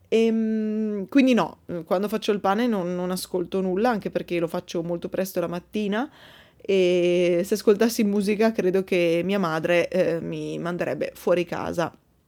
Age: 20-39